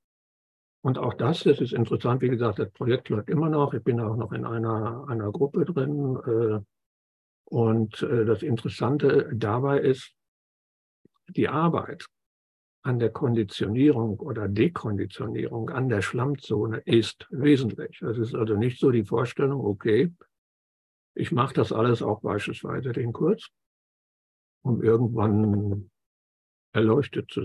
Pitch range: 105-125 Hz